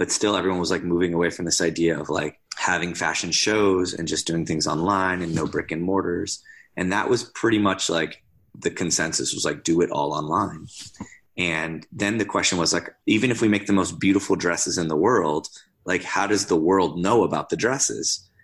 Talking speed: 210 wpm